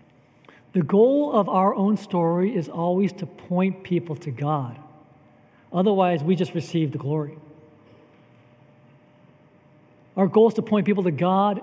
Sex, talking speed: male, 140 wpm